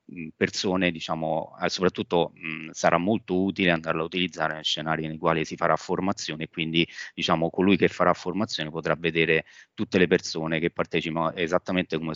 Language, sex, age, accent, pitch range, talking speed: Italian, male, 30-49, native, 80-90 Hz, 160 wpm